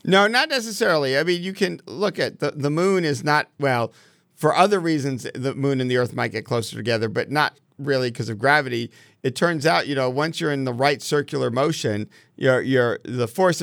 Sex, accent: male, American